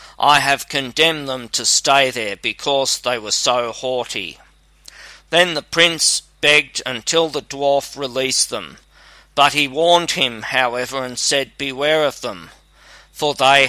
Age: 40-59